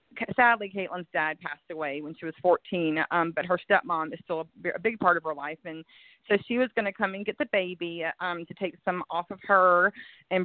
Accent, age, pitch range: American, 30-49, 170-210 Hz